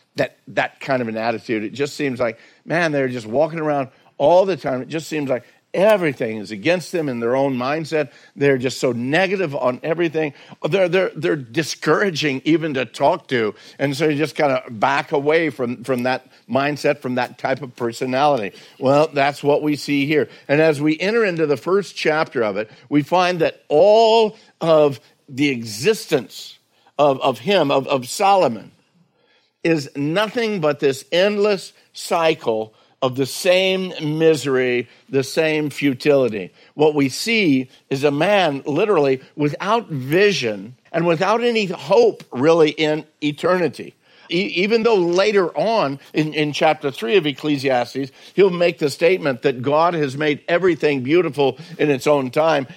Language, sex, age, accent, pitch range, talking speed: English, male, 50-69, American, 135-170 Hz, 165 wpm